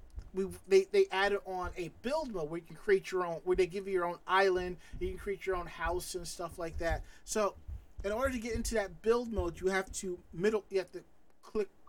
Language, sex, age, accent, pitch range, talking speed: English, male, 30-49, American, 165-210 Hz, 240 wpm